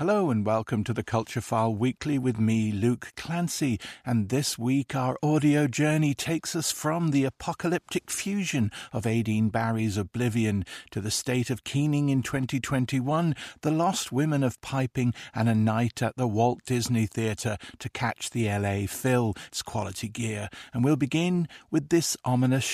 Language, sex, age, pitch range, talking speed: English, male, 50-69, 115-145 Hz, 160 wpm